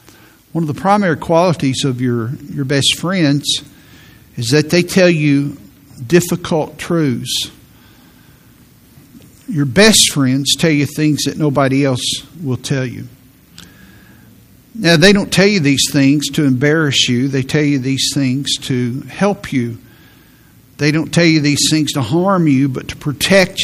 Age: 50-69